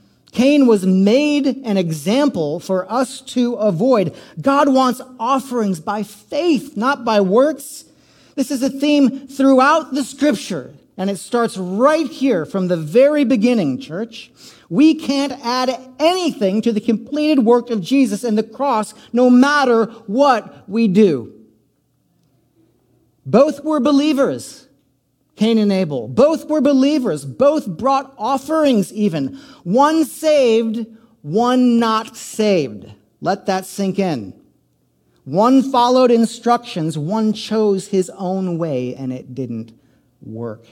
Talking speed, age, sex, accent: 125 wpm, 40-59, male, American